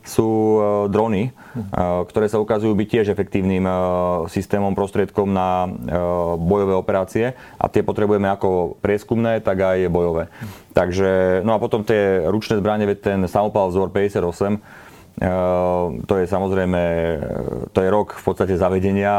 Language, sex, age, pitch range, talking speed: Slovak, male, 30-49, 95-110 Hz, 130 wpm